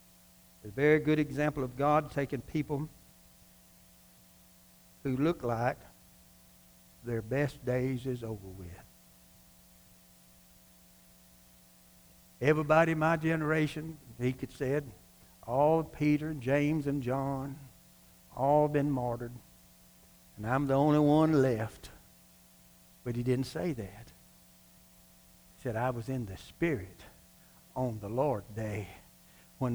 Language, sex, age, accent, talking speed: English, male, 60-79, American, 110 wpm